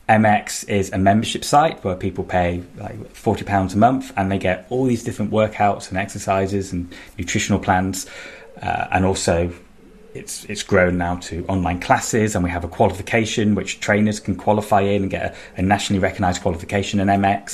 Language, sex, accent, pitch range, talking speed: English, male, British, 95-110 Hz, 185 wpm